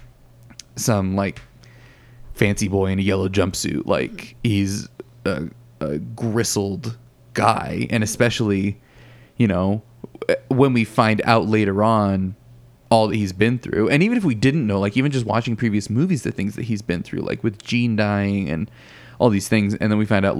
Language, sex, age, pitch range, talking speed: English, male, 20-39, 100-120 Hz, 175 wpm